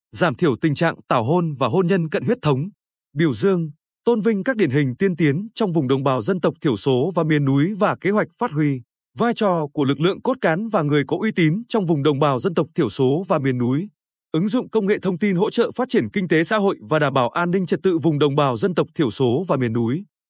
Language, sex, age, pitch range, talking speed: Vietnamese, male, 20-39, 145-200 Hz, 270 wpm